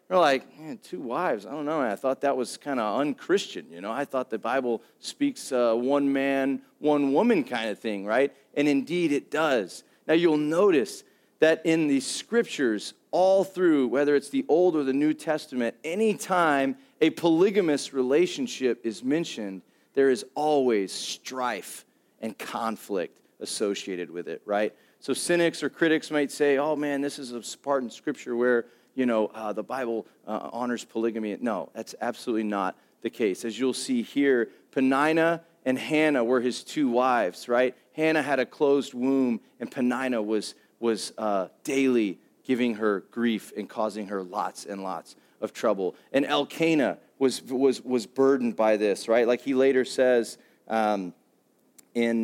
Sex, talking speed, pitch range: male, 165 wpm, 120-160 Hz